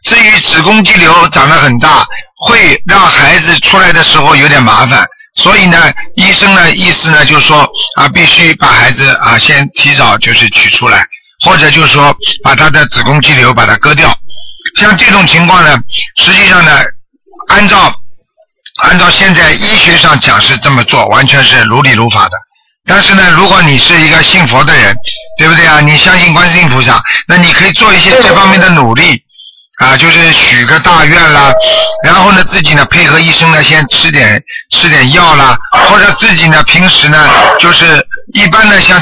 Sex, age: male, 50-69